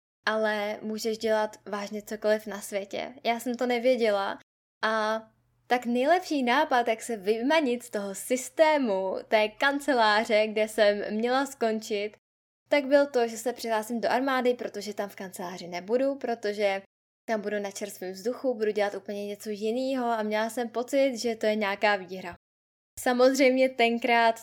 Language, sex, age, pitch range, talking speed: Czech, female, 10-29, 215-240 Hz, 150 wpm